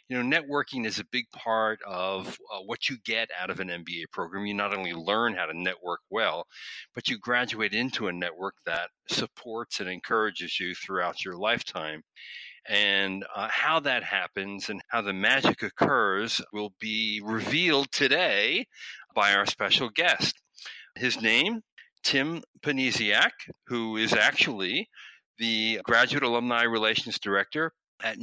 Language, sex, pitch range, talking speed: English, male, 100-140 Hz, 150 wpm